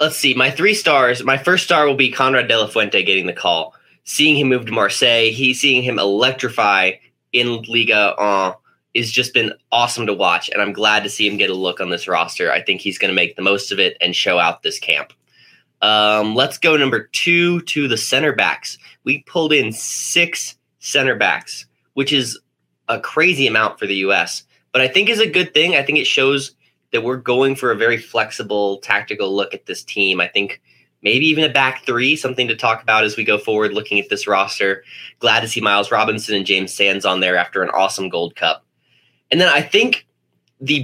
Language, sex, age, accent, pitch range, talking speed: English, male, 20-39, American, 100-140 Hz, 215 wpm